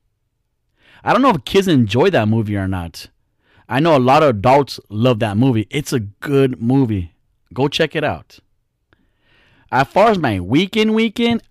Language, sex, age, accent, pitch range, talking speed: English, male, 30-49, American, 110-145 Hz, 170 wpm